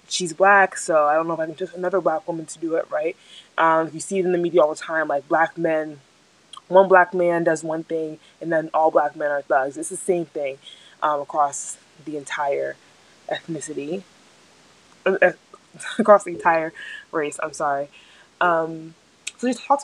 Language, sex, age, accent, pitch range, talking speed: English, female, 20-39, American, 160-205 Hz, 190 wpm